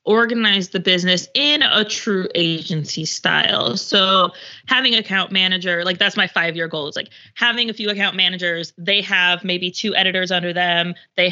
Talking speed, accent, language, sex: 175 wpm, American, English, female